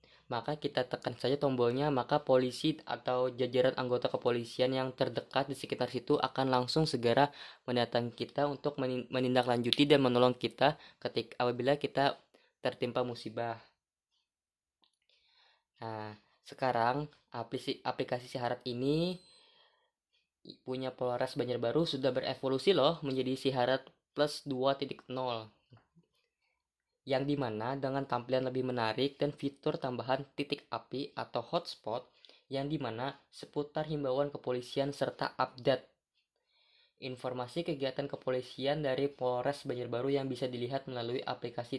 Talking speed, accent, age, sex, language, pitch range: 110 wpm, native, 20-39, female, Indonesian, 120-140 Hz